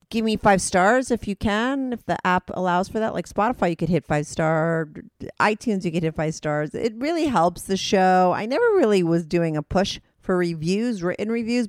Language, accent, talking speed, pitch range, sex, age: English, American, 215 wpm, 150-205 Hz, female, 40-59